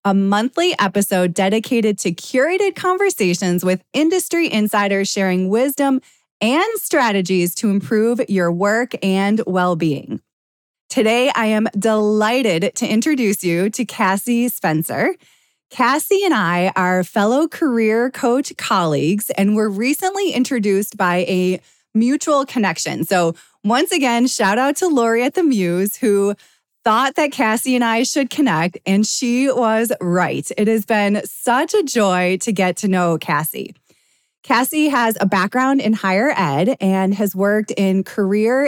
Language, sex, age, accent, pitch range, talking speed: English, female, 20-39, American, 190-250 Hz, 140 wpm